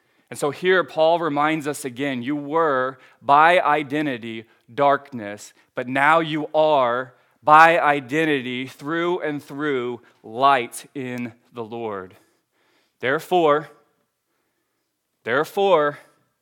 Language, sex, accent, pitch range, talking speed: English, male, American, 125-150 Hz, 100 wpm